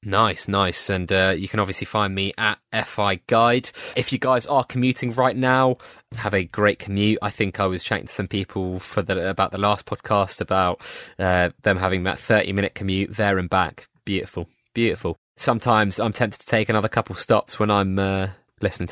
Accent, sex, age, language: British, male, 20-39, English